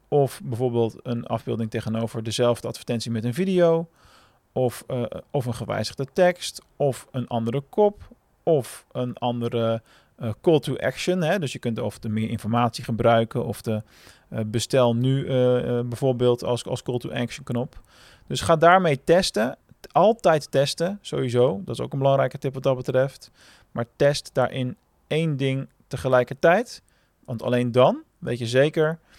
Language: Dutch